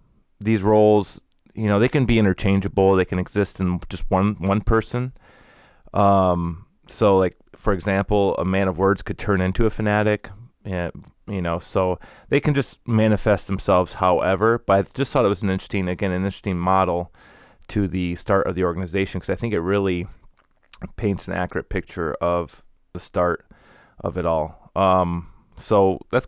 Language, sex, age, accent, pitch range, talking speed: English, male, 30-49, American, 90-105 Hz, 175 wpm